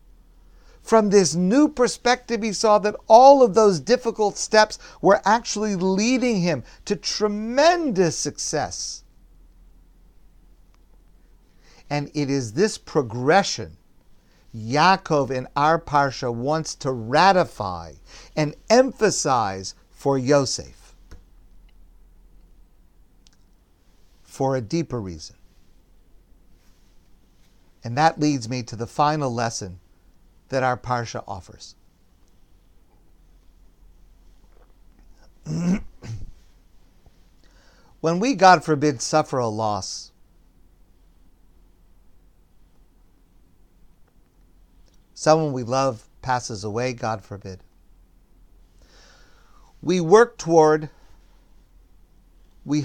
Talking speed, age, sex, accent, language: 80 wpm, 50-69, male, American, English